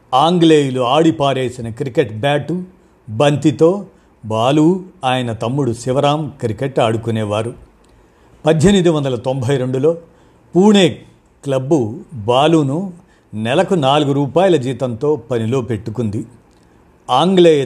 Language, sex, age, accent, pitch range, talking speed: Telugu, male, 50-69, native, 120-160 Hz, 85 wpm